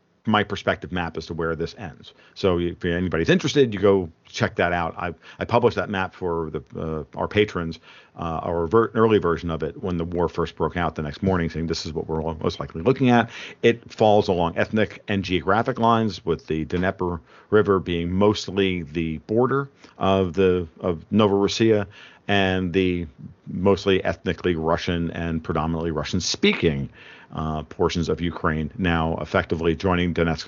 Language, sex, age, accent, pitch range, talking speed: English, male, 50-69, American, 85-105 Hz, 175 wpm